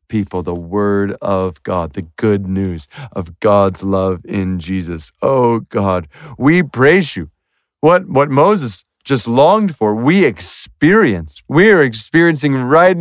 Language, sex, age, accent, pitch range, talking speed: English, male, 40-59, American, 120-180 Hz, 140 wpm